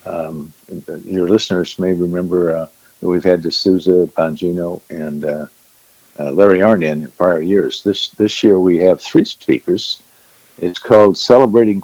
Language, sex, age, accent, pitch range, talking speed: English, male, 50-69, American, 85-100 Hz, 145 wpm